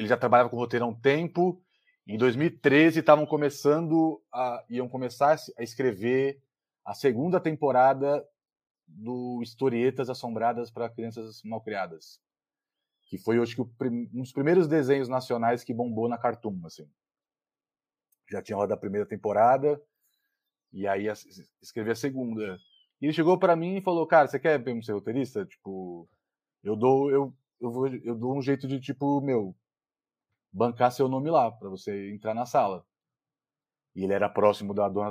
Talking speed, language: 155 wpm, Portuguese